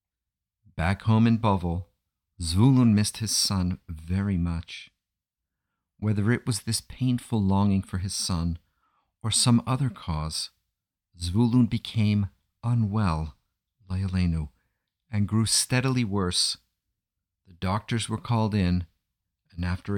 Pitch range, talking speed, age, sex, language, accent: 90-110 Hz, 115 wpm, 50-69, male, English, American